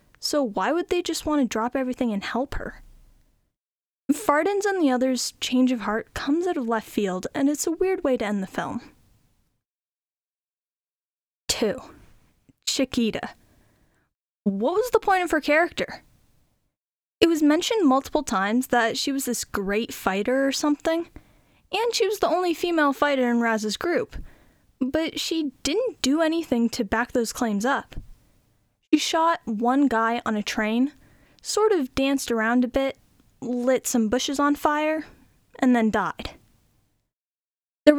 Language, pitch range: English, 230-315 Hz